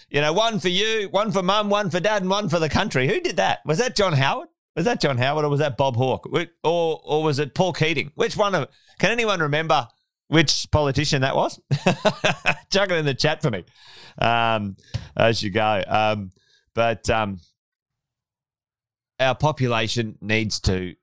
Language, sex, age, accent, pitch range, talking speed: English, male, 30-49, Australian, 115-175 Hz, 190 wpm